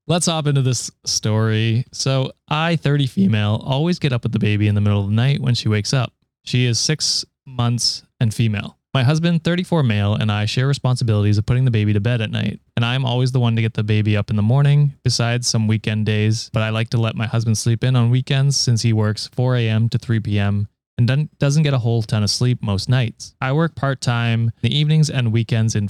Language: English